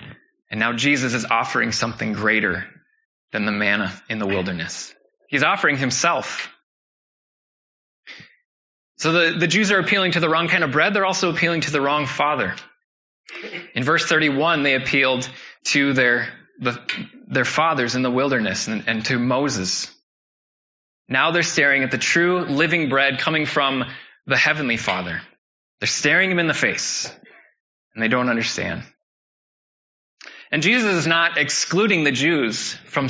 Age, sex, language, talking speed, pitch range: 20-39, male, English, 150 wpm, 125-170 Hz